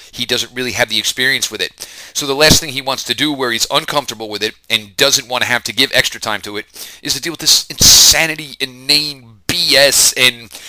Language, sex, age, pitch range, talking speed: English, male, 40-59, 115-145 Hz, 235 wpm